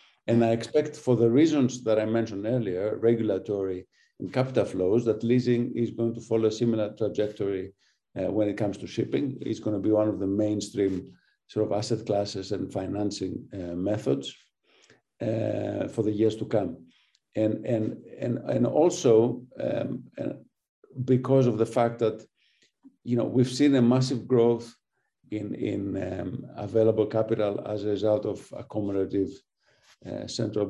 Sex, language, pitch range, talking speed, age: male, English, 100-120 Hz, 155 wpm, 50-69